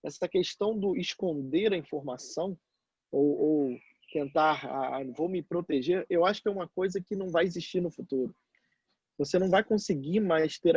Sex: male